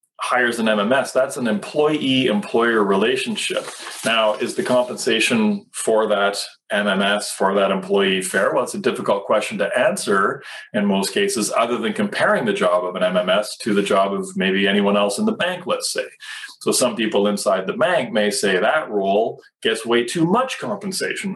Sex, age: male, 30-49